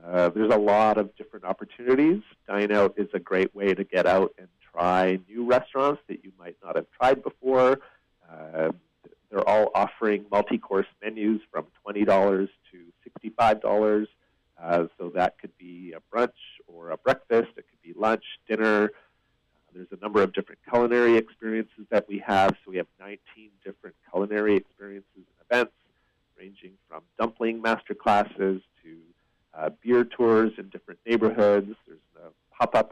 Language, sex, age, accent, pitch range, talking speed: English, male, 50-69, American, 95-110 Hz, 160 wpm